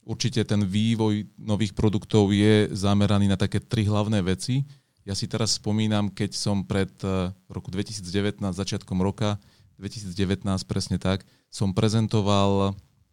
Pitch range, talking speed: 95-110 Hz, 130 wpm